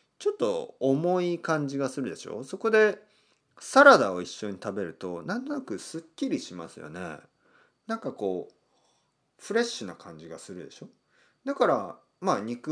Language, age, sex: Japanese, 40-59, male